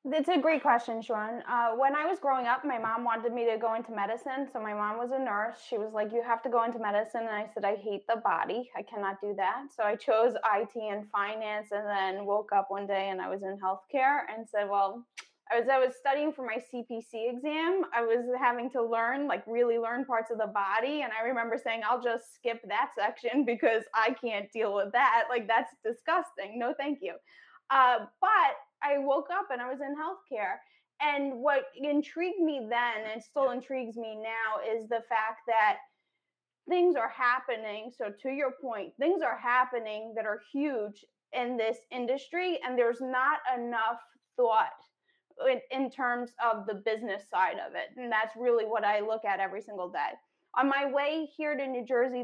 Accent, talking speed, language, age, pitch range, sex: American, 205 wpm, English, 10-29, 220-270 Hz, female